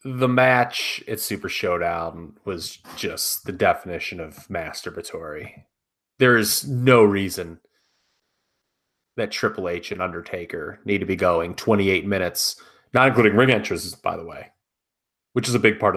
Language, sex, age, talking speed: English, male, 30-49, 145 wpm